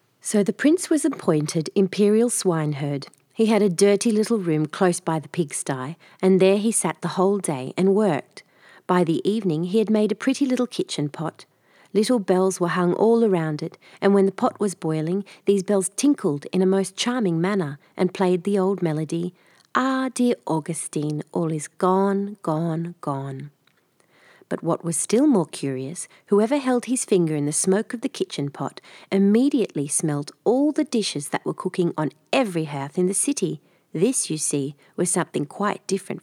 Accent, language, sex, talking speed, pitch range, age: Australian, English, female, 180 wpm, 160-215 Hz, 40-59